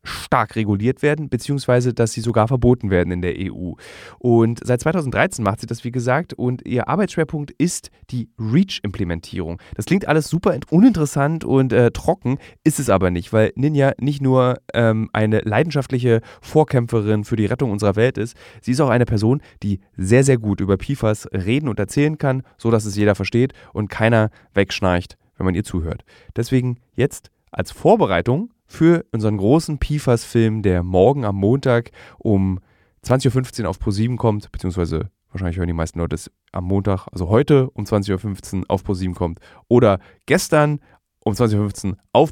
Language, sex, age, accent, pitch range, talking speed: German, male, 30-49, German, 95-130 Hz, 170 wpm